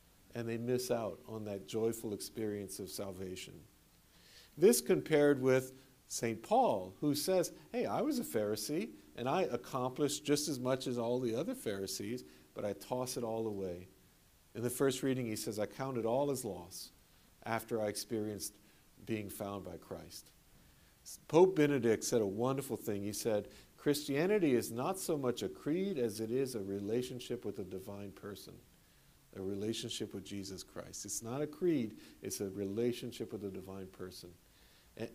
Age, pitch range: 50-69, 100-135 Hz